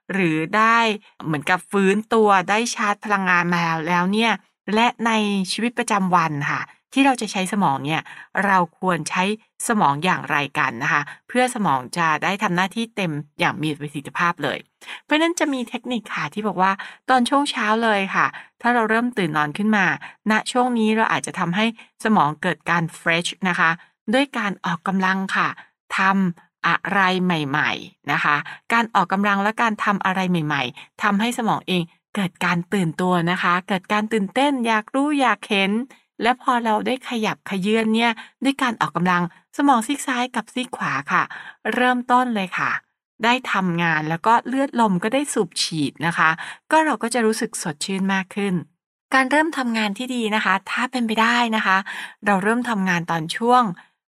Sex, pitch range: female, 175-230 Hz